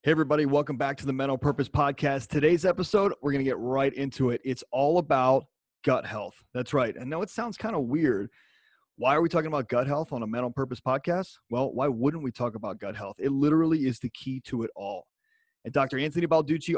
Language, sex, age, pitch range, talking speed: English, male, 30-49, 125-160 Hz, 230 wpm